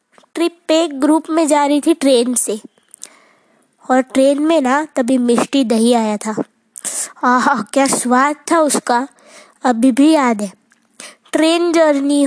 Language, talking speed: Hindi, 140 wpm